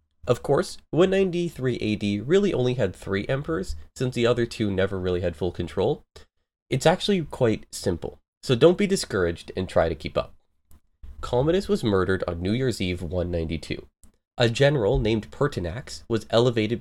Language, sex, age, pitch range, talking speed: English, male, 30-49, 90-140 Hz, 160 wpm